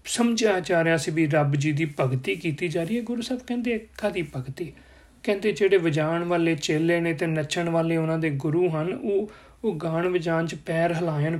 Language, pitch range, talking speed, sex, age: Punjabi, 160-190 Hz, 205 wpm, male, 40-59